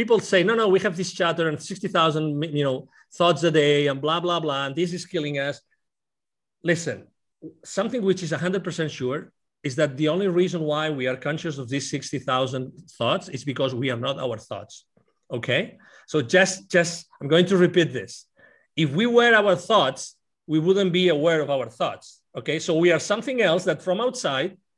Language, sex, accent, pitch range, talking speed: English, male, Spanish, 155-200 Hz, 190 wpm